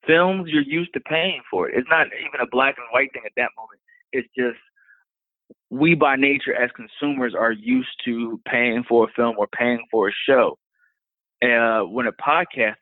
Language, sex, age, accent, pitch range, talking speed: English, male, 20-39, American, 115-140 Hz, 190 wpm